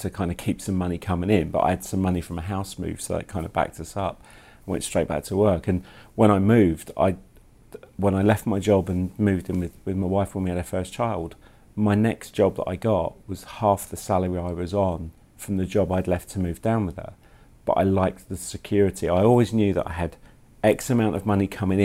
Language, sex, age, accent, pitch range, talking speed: English, male, 40-59, British, 90-105 Hz, 245 wpm